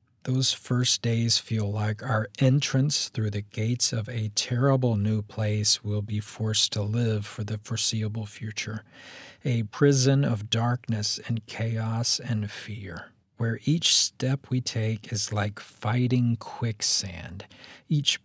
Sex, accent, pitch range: male, American, 105-125 Hz